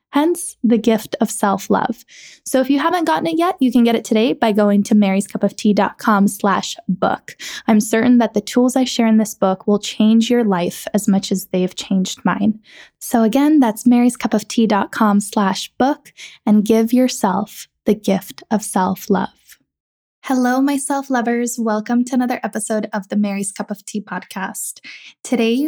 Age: 10-29